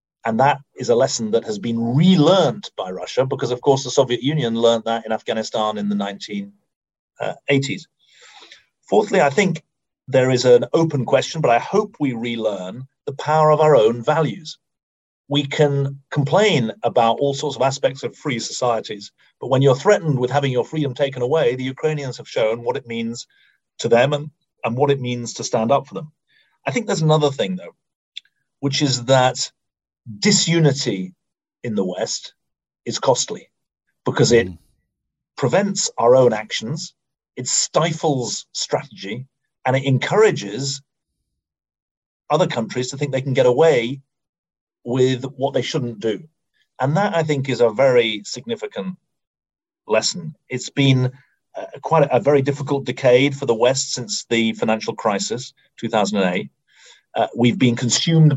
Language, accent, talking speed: English, British, 155 wpm